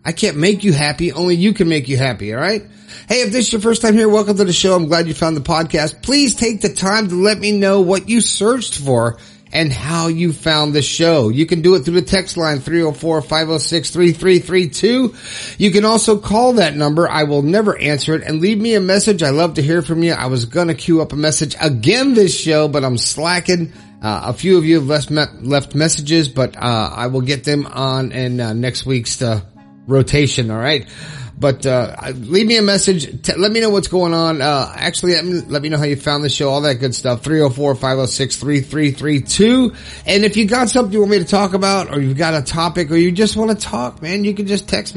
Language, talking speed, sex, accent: English, 245 wpm, male, American